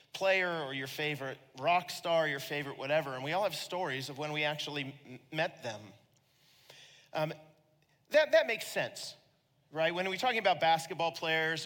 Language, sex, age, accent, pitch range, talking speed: English, male, 40-59, American, 140-170 Hz, 170 wpm